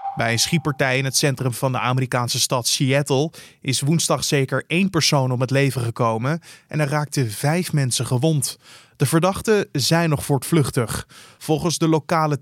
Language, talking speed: Dutch, 165 wpm